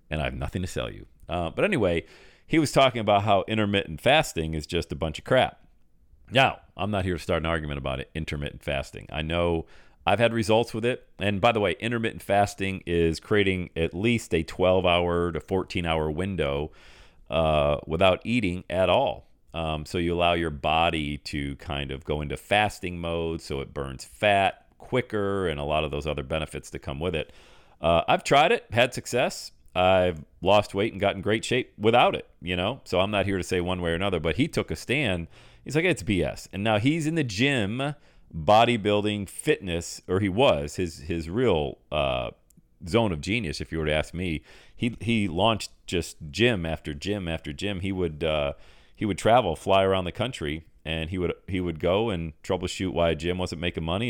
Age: 40-59